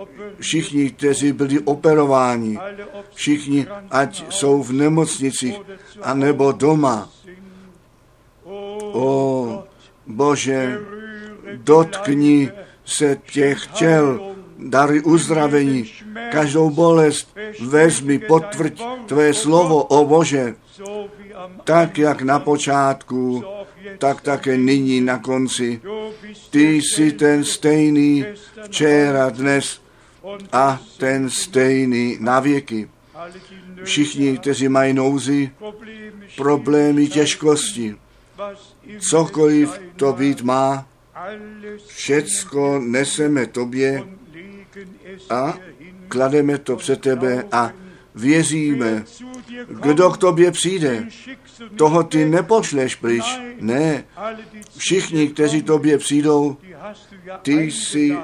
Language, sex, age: Czech, male, 60-79